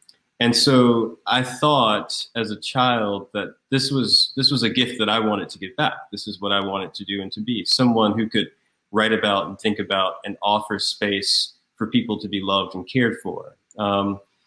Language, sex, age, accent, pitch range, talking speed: English, male, 30-49, American, 100-120 Hz, 205 wpm